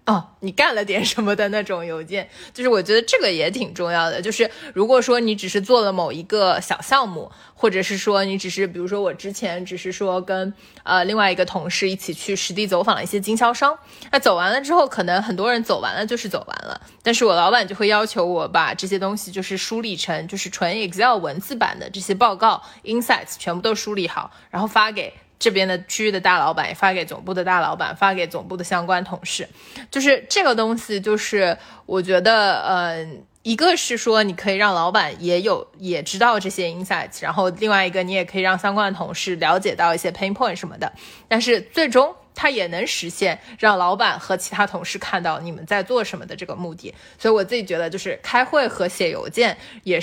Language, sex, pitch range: Chinese, female, 185-225 Hz